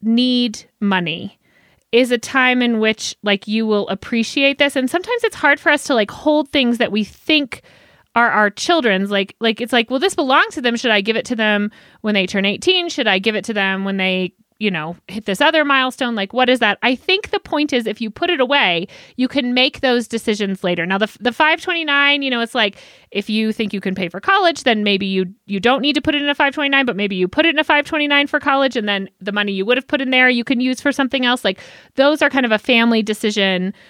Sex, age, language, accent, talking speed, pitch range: female, 30-49, English, American, 255 wpm, 205-275 Hz